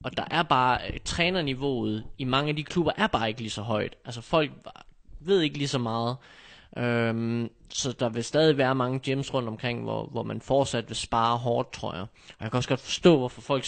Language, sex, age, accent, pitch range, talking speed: Danish, male, 20-39, native, 115-140 Hz, 220 wpm